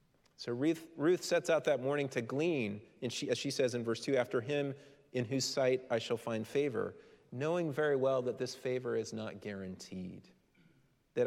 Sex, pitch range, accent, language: male, 115-180 Hz, American, English